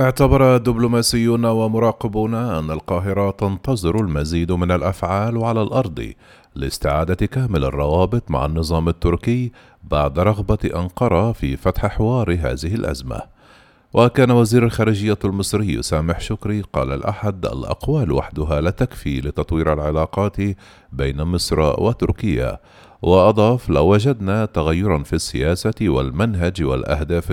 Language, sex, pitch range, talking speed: Arabic, male, 80-110 Hz, 110 wpm